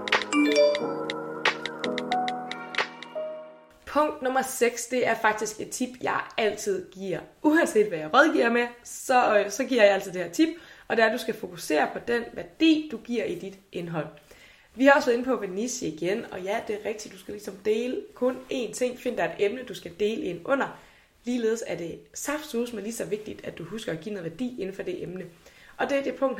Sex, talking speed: female, 210 wpm